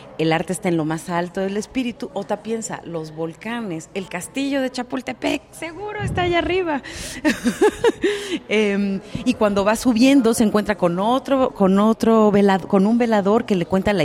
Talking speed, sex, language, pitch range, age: 165 wpm, female, Spanish, 160-215 Hz, 40-59